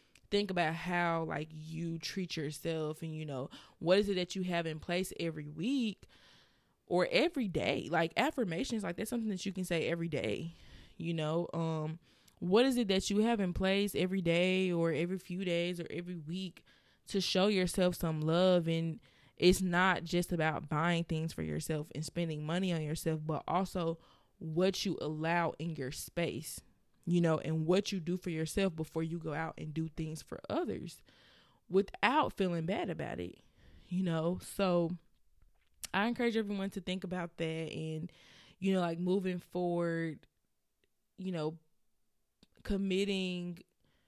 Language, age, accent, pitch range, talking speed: English, 20-39, American, 160-190 Hz, 165 wpm